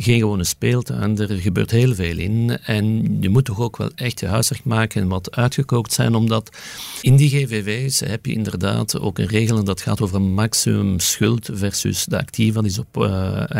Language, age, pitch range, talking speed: Dutch, 50-69, 105-135 Hz, 200 wpm